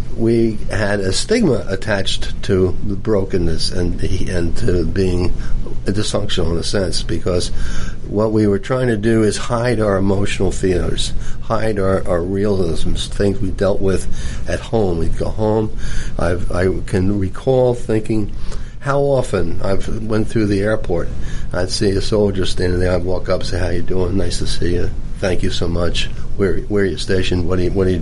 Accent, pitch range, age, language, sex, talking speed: American, 90-115 Hz, 60-79, English, male, 185 wpm